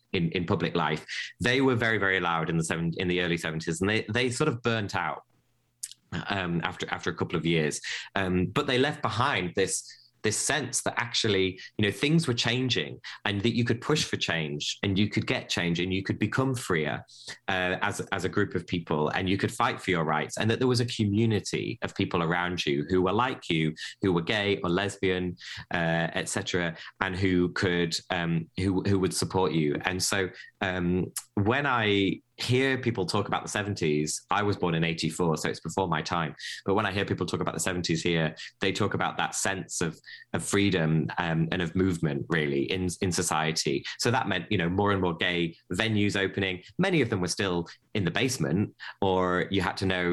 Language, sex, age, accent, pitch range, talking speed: English, male, 20-39, British, 85-105 Hz, 215 wpm